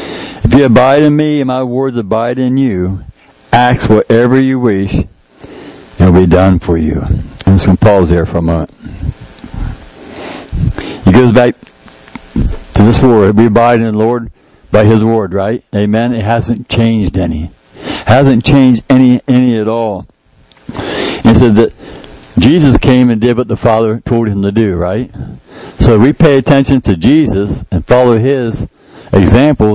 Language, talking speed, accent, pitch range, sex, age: English, 170 wpm, American, 100-125 Hz, male, 60-79